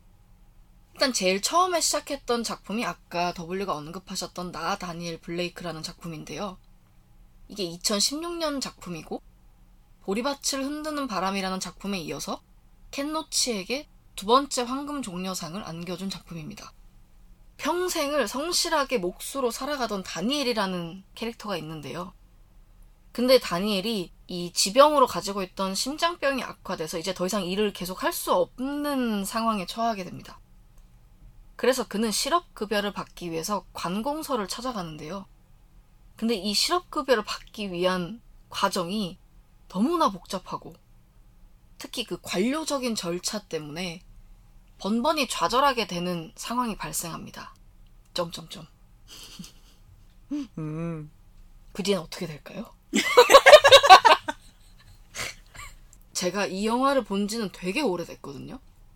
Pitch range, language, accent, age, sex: 180-265 Hz, Korean, native, 20-39, female